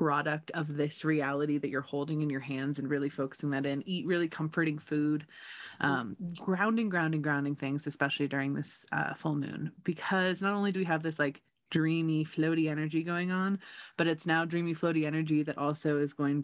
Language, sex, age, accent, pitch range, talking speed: English, female, 20-39, American, 145-185 Hz, 195 wpm